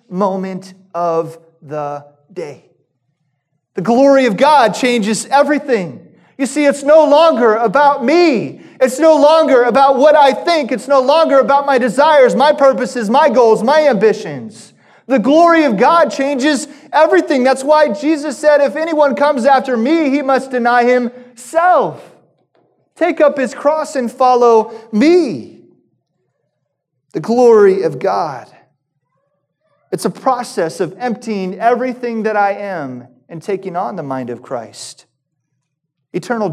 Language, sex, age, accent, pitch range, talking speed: English, male, 30-49, American, 180-275 Hz, 135 wpm